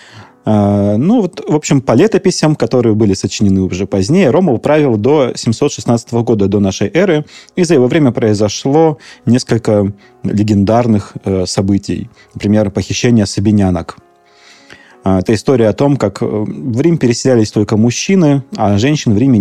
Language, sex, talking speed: Russian, male, 140 wpm